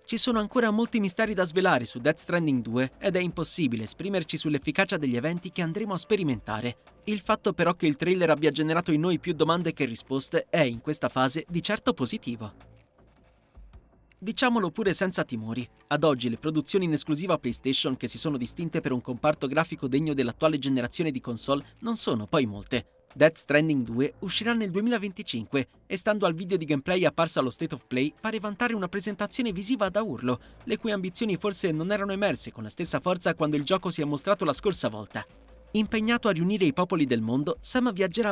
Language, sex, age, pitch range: Italian, male, 30-49, 135-195 Hz